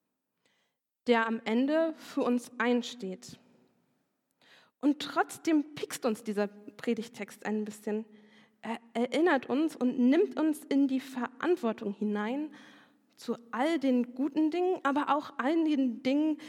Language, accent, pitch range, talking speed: German, German, 230-290 Hz, 120 wpm